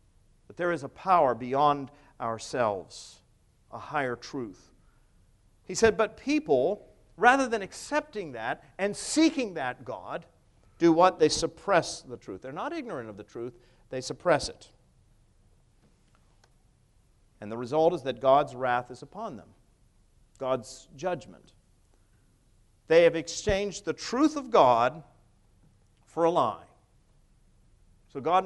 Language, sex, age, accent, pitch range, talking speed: English, male, 50-69, American, 115-180 Hz, 130 wpm